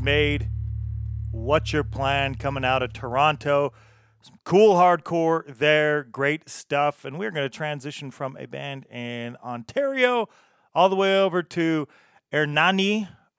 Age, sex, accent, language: 30-49, male, American, English